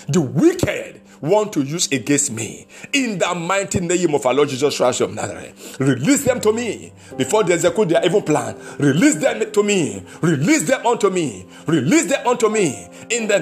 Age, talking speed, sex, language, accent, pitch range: 50-69, 190 wpm, male, English, Nigerian, 155-245 Hz